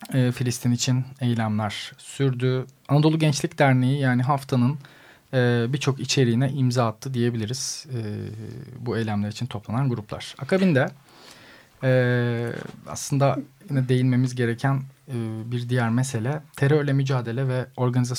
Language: Turkish